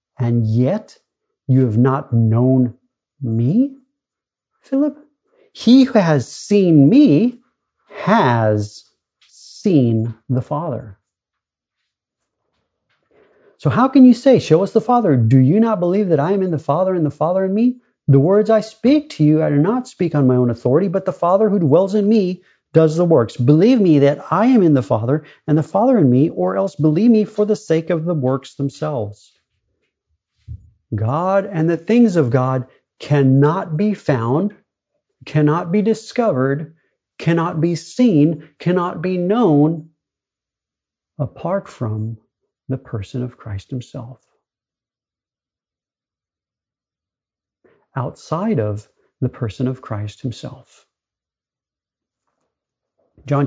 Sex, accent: male, American